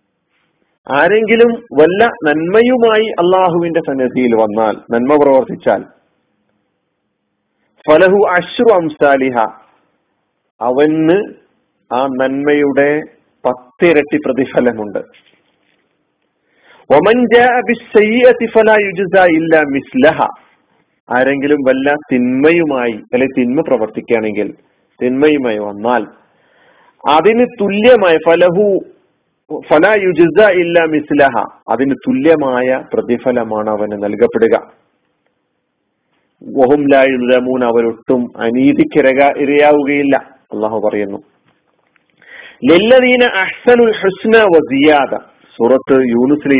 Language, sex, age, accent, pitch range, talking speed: Malayalam, male, 40-59, native, 125-195 Hz, 55 wpm